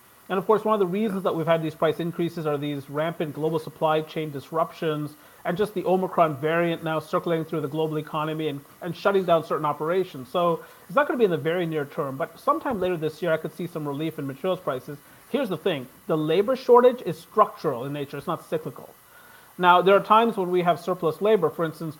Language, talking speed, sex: English, 230 wpm, male